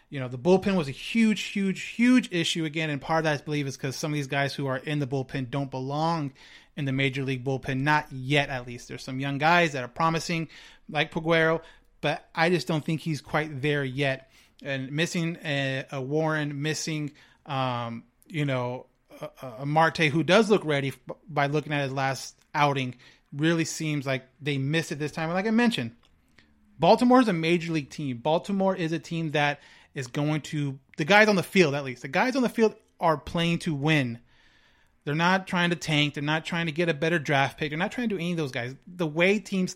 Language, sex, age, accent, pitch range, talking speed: English, male, 30-49, American, 140-170 Hz, 225 wpm